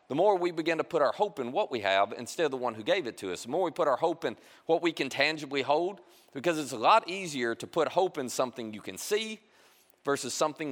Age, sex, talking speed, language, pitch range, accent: 40-59, male, 270 wpm, English, 130-185 Hz, American